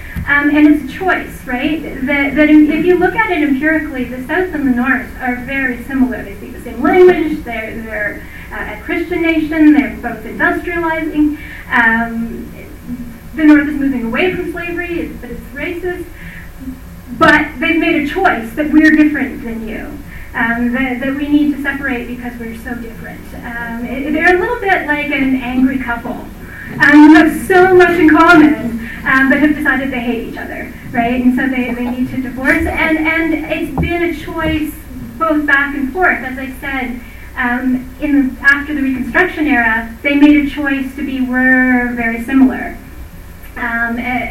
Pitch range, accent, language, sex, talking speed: 245-305 Hz, American, English, female, 175 wpm